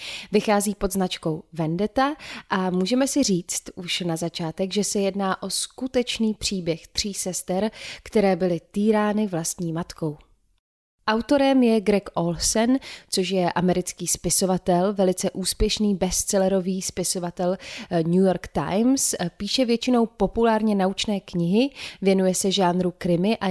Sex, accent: female, native